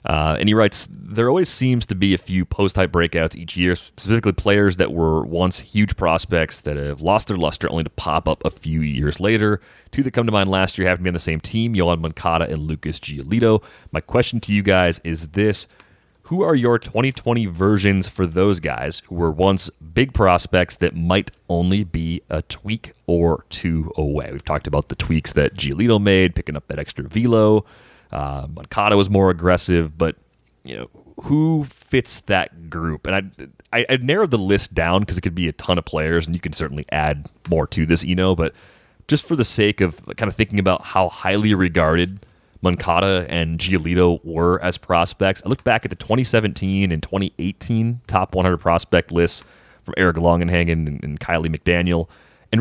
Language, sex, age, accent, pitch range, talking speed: English, male, 30-49, American, 80-105 Hz, 200 wpm